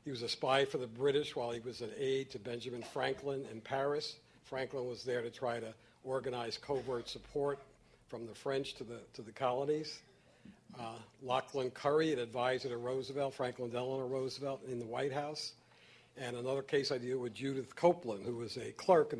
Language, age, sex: English, 60-79, male